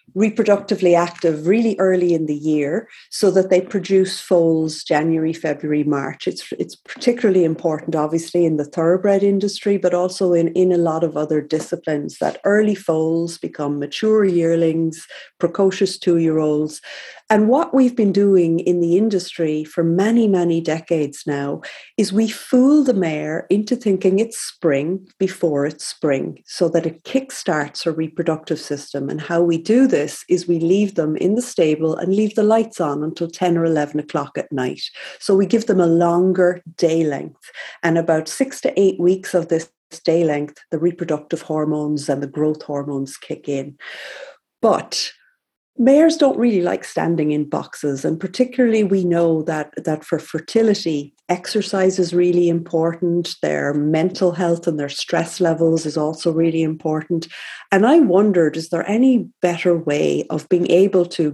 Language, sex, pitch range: English, female, 160-195 Hz